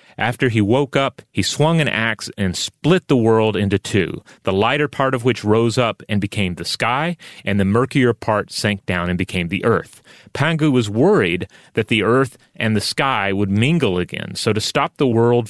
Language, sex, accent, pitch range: English, male, American, 100-125 Hz